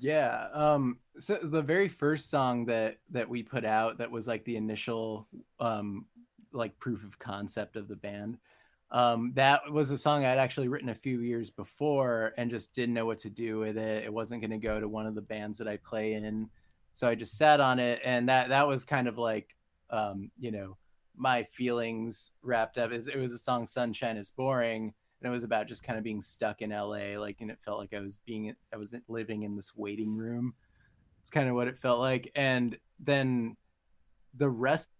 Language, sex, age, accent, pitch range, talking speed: English, male, 20-39, American, 110-125 Hz, 215 wpm